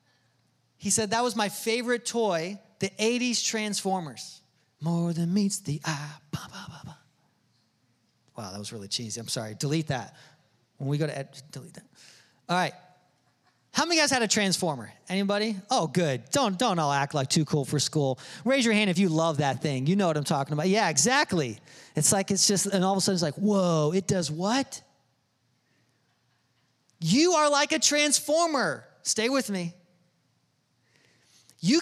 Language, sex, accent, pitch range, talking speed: English, male, American, 135-200 Hz, 175 wpm